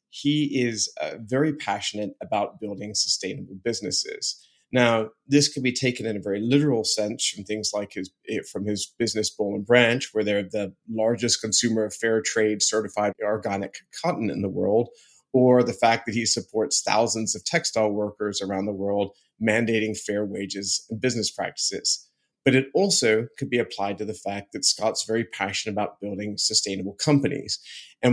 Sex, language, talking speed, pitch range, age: male, English, 170 wpm, 105-125 Hz, 30-49